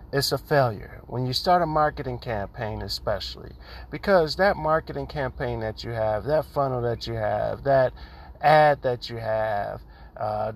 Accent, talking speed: American, 160 wpm